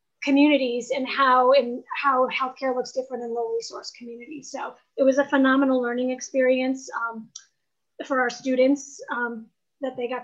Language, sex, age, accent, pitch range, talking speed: English, female, 30-49, American, 240-270 Hz, 160 wpm